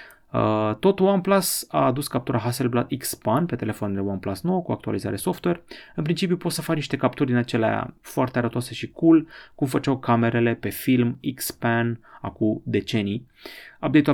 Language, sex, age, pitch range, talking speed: Romanian, male, 30-49, 110-140 Hz, 155 wpm